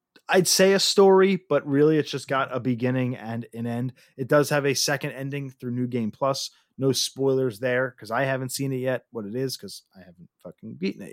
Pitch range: 125-160 Hz